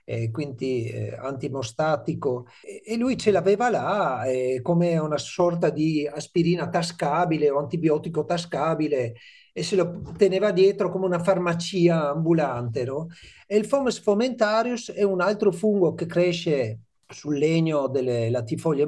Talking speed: 145 wpm